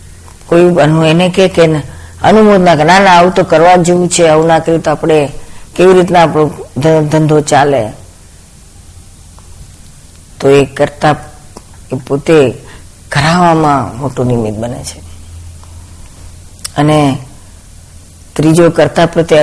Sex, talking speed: female, 60 wpm